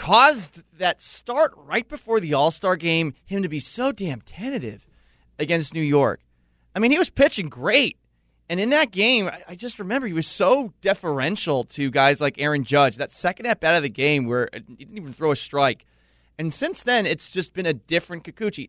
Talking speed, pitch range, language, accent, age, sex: 200 wpm, 125-175 Hz, English, American, 30-49, male